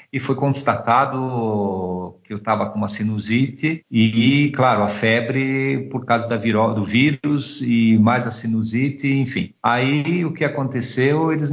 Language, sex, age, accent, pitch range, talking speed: Portuguese, male, 50-69, Brazilian, 105-130 Hz, 150 wpm